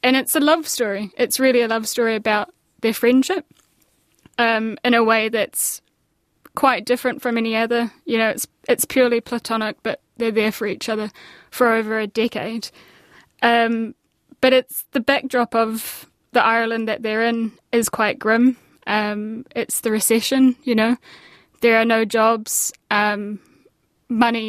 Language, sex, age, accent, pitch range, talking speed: English, female, 10-29, British, 220-250 Hz, 160 wpm